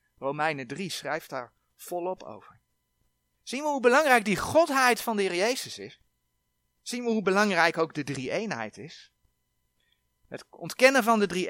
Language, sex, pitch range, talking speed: Dutch, male, 140-215 Hz, 160 wpm